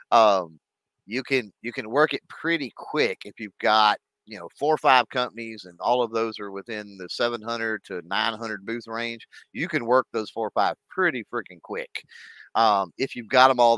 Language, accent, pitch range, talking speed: English, American, 100-120 Hz, 200 wpm